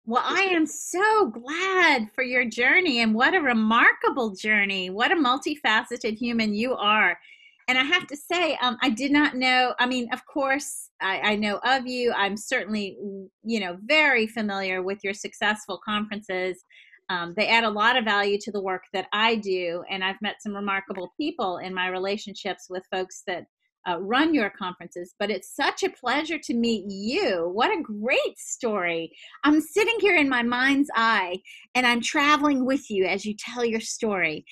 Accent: American